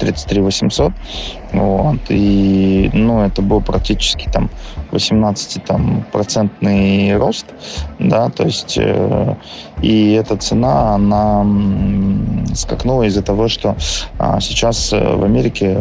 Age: 20-39